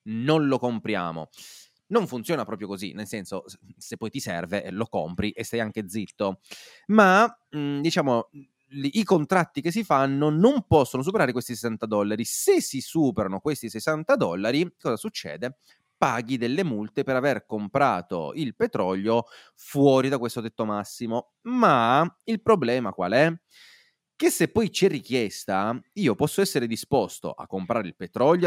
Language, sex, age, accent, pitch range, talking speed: Italian, male, 30-49, native, 110-150 Hz, 150 wpm